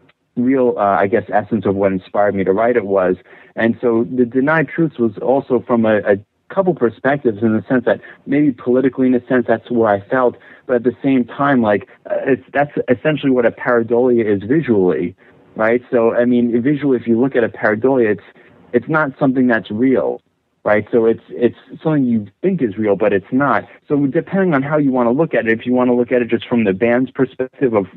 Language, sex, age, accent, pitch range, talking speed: English, male, 30-49, American, 115-130 Hz, 225 wpm